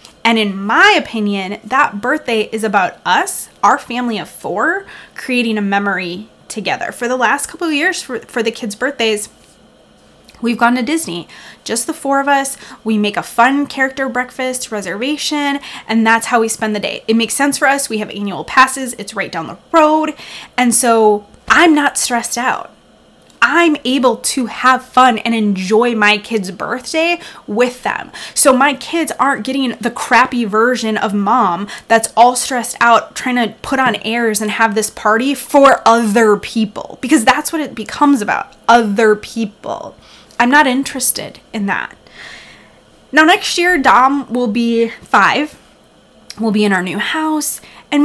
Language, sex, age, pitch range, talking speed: English, female, 20-39, 220-275 Hz, 170 wpm